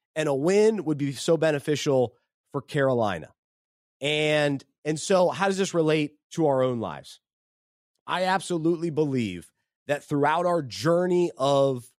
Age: 30-49